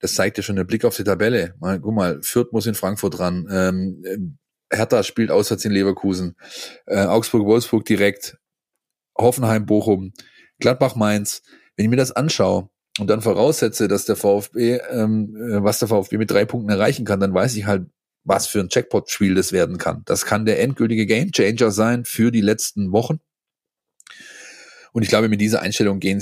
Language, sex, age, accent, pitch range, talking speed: German, male, 30-49, German, 100-115 Hz, 175 wpm